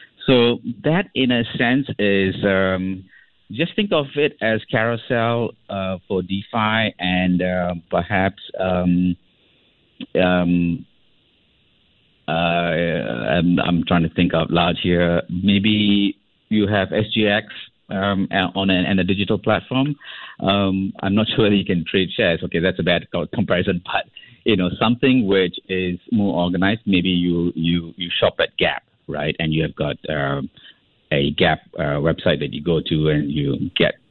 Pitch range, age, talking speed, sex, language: 85-110 Hz, 50-69, 150 wpm, male, English